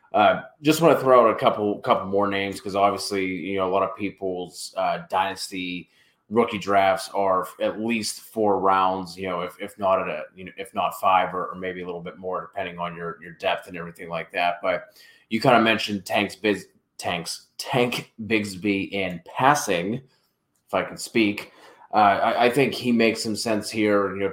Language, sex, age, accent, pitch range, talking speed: English, male, 20-39, American, 95-105 Hz, 205 wpm